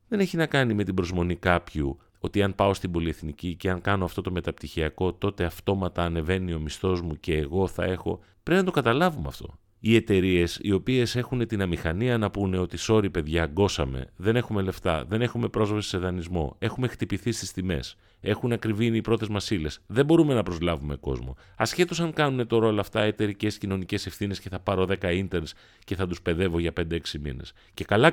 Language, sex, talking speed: Greek, male, 200 wpm